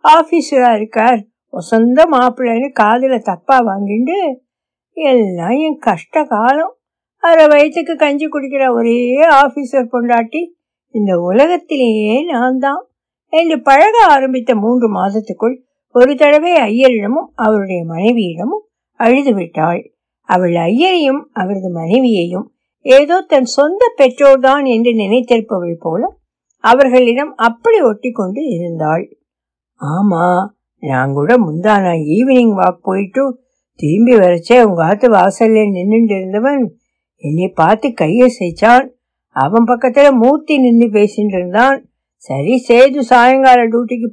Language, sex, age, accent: Tamil, female, 60-79, native